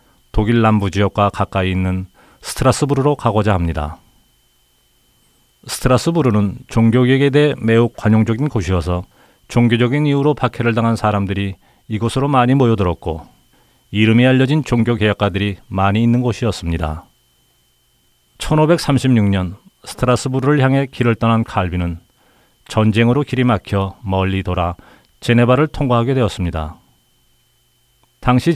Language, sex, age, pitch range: Korean, male, 40-59, 95-125 Hz